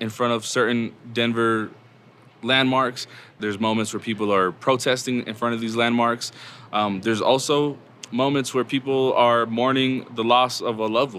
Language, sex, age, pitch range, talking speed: English, male, 20-39, 105-120 Hz, 160 wpm